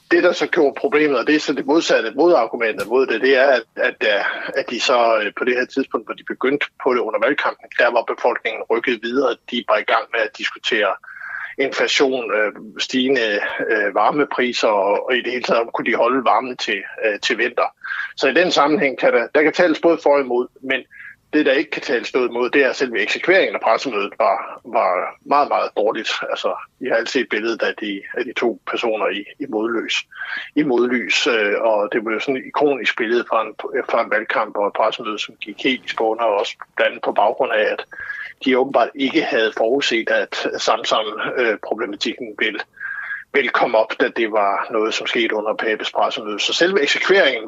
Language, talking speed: Danish, 210 wpm